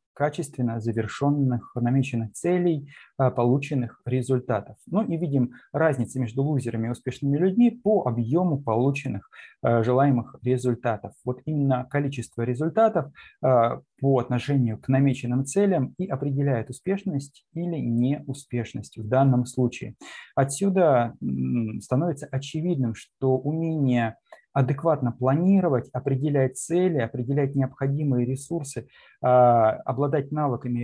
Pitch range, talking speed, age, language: 125-145 Hz, 100 wpm, 20-39, Russian